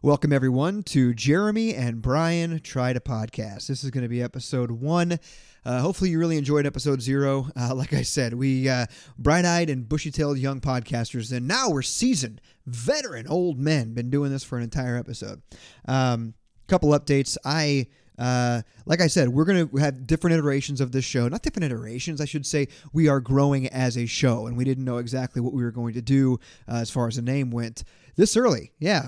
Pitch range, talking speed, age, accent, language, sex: 125-150 Hz, 205 wpm, 30-49, American, English, male